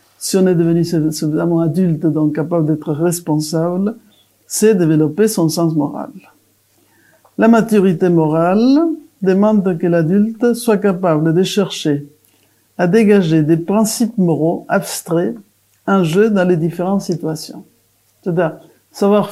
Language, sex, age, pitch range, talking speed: French, male, 60-79, 160-205 Hz, 120 wpm